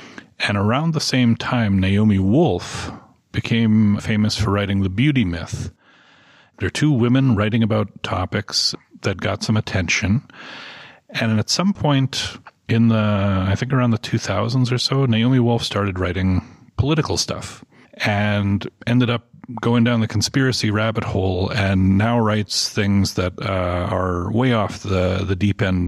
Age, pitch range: 40-59, 100-130 Hz